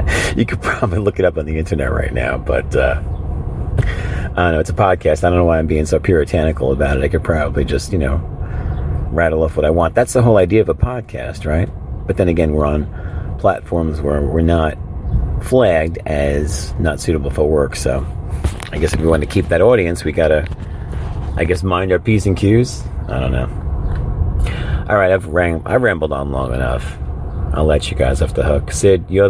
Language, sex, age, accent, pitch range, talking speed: English, male, 40-59, American, 75-90 Hz, 210 wpm